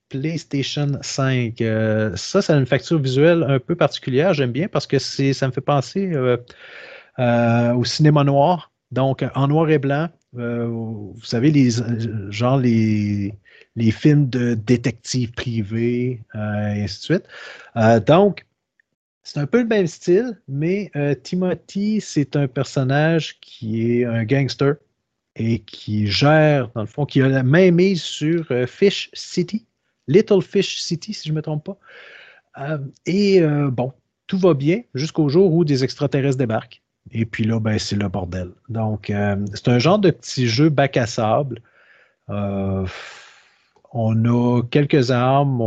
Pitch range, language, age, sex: 115-150 Hz, French, 30-49, male